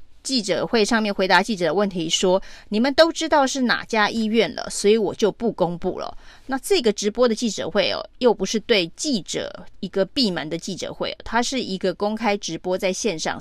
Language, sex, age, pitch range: Chinese, female, 30-49, 190-240 Hz